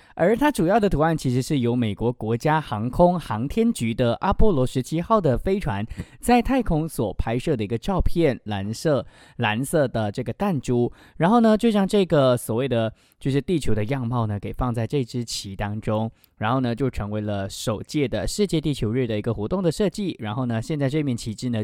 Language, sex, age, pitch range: English, male, 20-39, 110-150 Hz